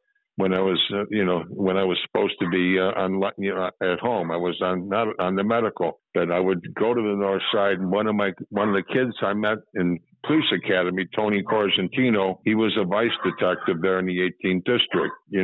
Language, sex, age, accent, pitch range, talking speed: English, male, 60-79, American, 95-105 Hz, 215 wpm